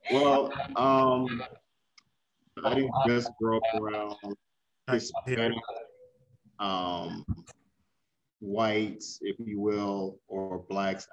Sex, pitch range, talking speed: male, 100-115 Hz, 80 wpm